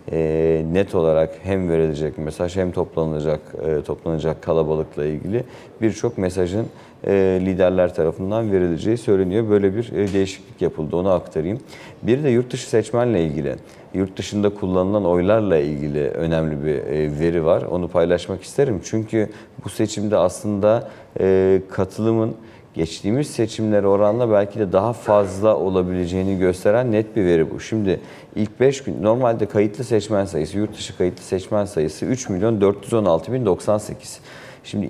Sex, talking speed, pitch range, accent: male, 130 wpm, 90-110 Hz, native